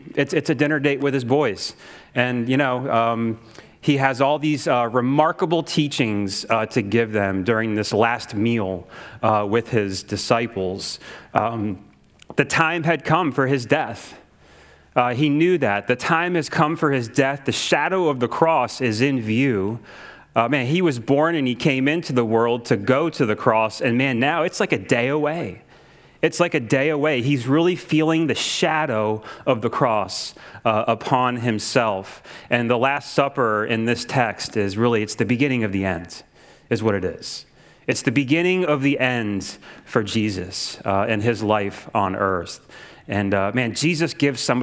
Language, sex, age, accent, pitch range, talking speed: English, male, 30-49, American, 110-150 Hz, 185 wpm